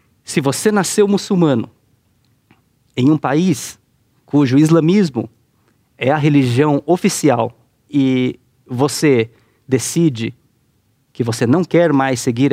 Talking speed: 105 wpm